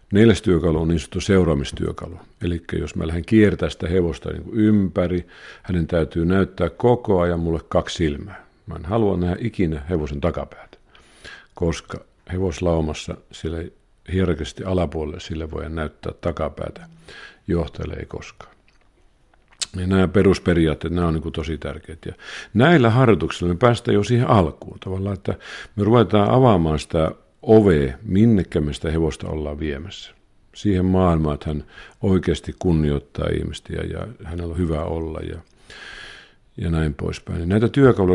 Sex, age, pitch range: male, 50-69, 80-95 Hz